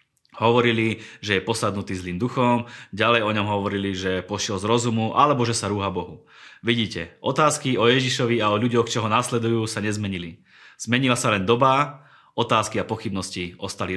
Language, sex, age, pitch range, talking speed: Slovak, male, 20-39, 100-125 Hz, 170 wpm